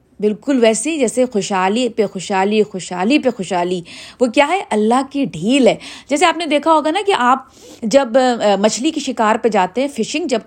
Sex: female